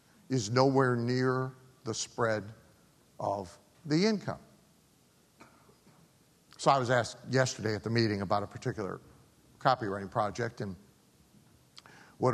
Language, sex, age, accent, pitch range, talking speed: English, male, 60-79, American, 100-130 Hz, 110 wpm